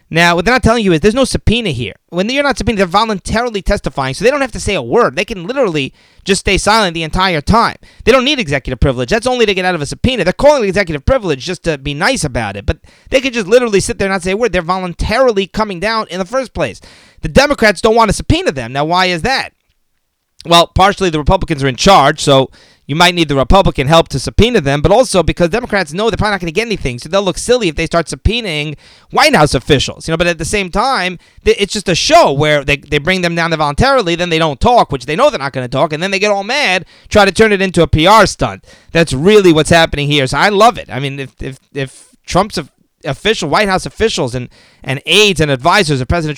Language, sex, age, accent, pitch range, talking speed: English, male, 30-49, American, 150-210 Hz, 260 wpm